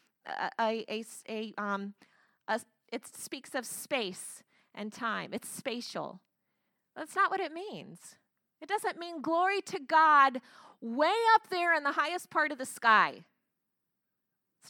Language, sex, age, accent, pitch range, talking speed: English, female, 30-49, American, 240-350 Hz, 145 wpm